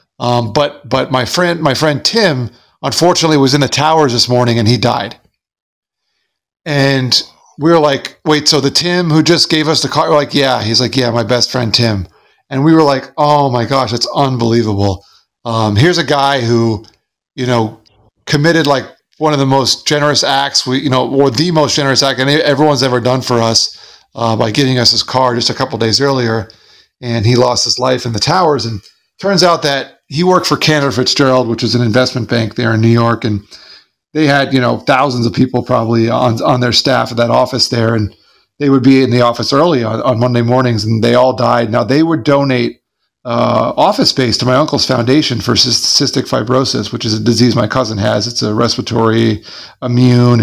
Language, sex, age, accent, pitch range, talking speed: English, male, 40-59, American, 115-140 Hz, 210 wpm